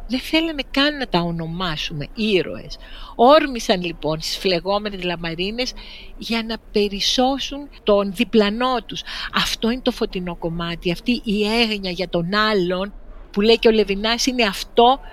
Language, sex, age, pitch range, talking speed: Greek, female, 50-69, 180-245 Hz, 145 wpm